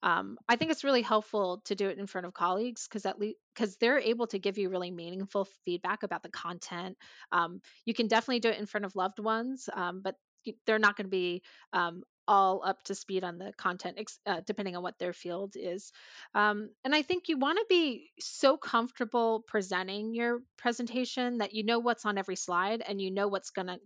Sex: female